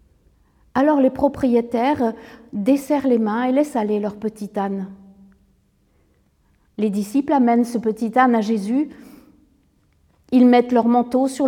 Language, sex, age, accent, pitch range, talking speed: French, female, 50-69, French, 235-305 Hz, 130 wpm